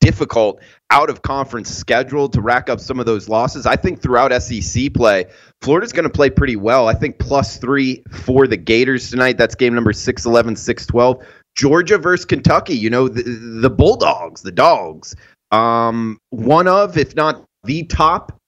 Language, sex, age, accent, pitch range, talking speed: English, male, 30-49, American, 105-130 Hz, 170 wpm